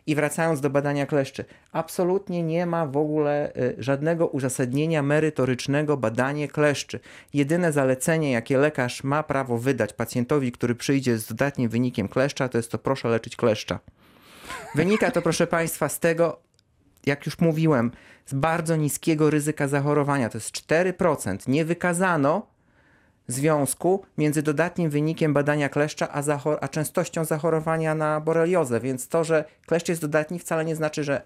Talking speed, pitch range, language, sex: 150 wpm, 140-170 Hz, Polish, male